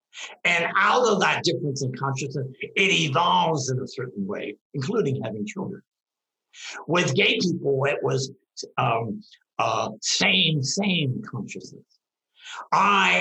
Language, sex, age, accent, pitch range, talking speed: English, male, 60-79, American, 140-190 Hz, 125 wpm